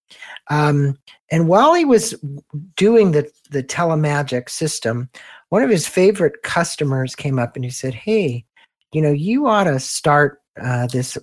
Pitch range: 130-170 Hz